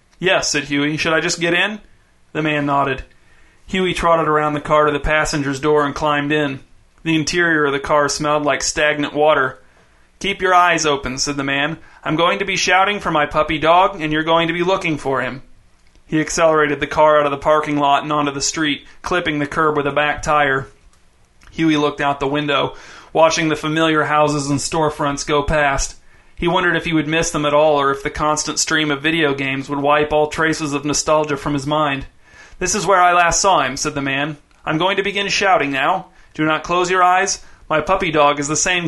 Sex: male